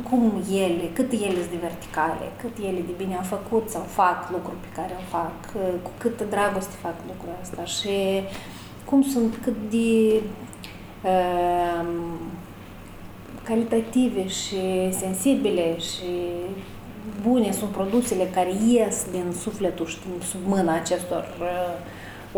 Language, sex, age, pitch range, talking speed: Romanian, female, 30-49, 180-245 Hz, 130 wpm